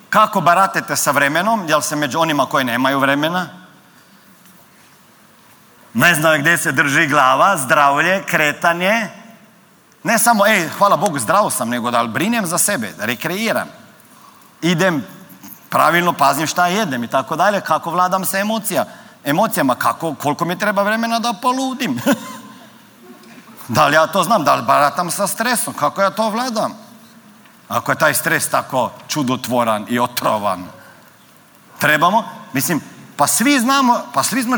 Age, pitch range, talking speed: 40-59, 160-230 Hz, 145 wpm